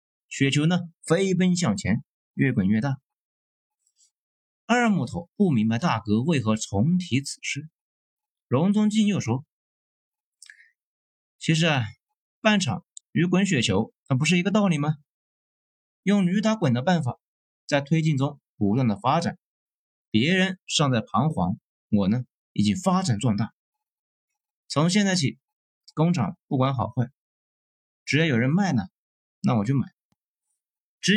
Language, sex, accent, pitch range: Chinese, male, native, 120-185 Hz